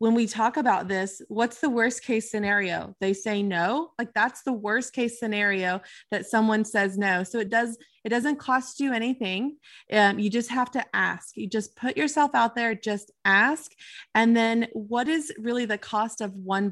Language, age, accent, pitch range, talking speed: English, 20-39, American, 200-235 Hz, 195 wpm